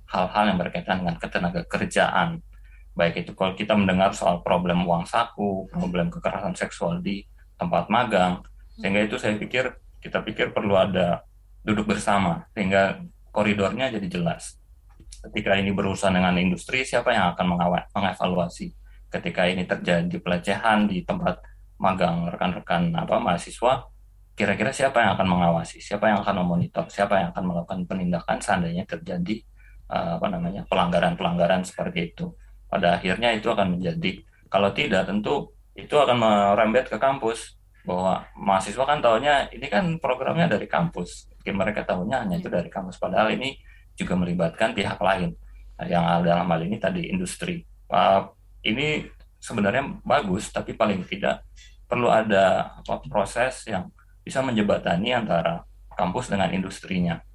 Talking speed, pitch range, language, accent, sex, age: 135 wpm, 90-105 Hz, Indonesian, native, male, 20-39